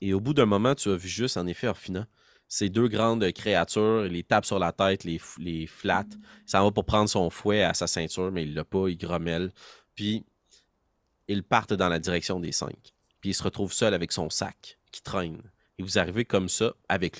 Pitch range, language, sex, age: 90-110 Hz, French, male, 30-49